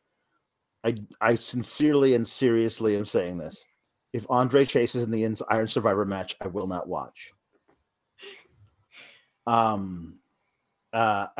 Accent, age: American, 30-49